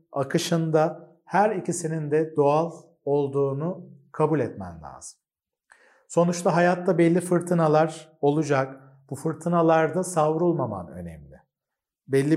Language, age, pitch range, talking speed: Turkish, 50-69, 150-175 Hz, 90 wpm